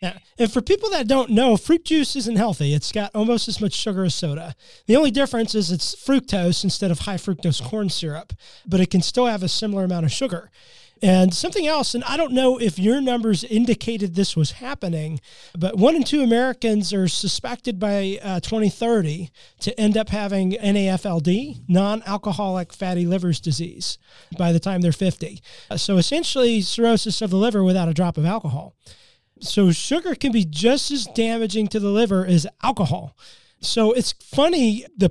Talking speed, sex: 180 wpm, male